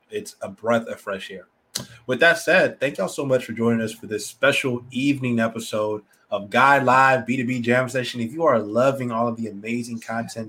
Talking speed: 205 wpm